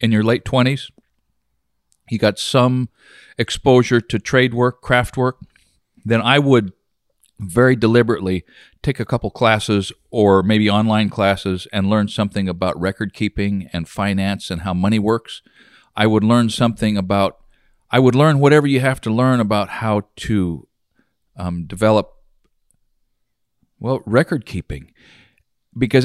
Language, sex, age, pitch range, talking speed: English, male, 50-69, 100-130 Hz, 140 wpm